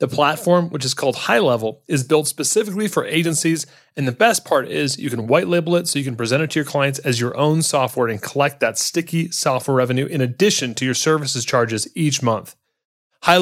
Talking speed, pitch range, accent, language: 210 wpm, 125-165 Hz, American, English